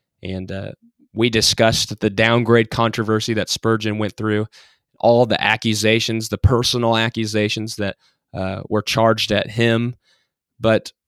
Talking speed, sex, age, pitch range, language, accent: 130 wpm, male, 20-39, 105-120 Hz, English, American